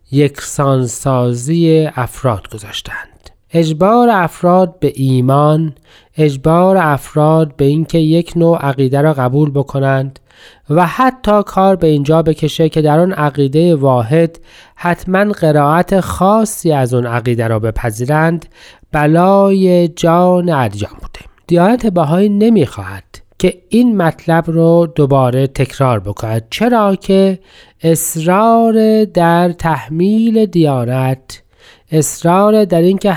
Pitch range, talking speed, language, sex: 145-190 Hz, 110 wpm, Persian, male